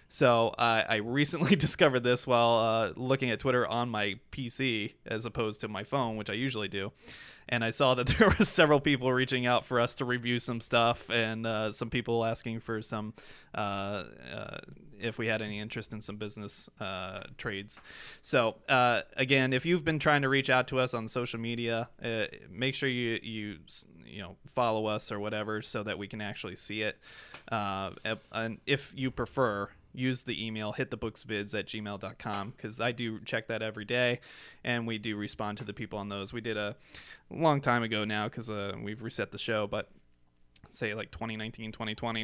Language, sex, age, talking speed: English, male, 20-39, 200 wpm